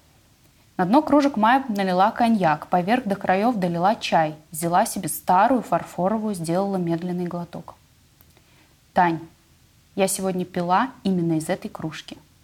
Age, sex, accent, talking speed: 20-39, female, native, 125 wpm